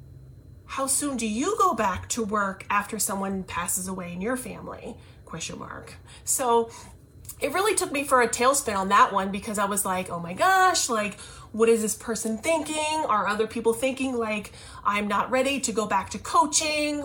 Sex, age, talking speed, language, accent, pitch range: female, 30-49, 190 wpm, English, American, 205-280 Hz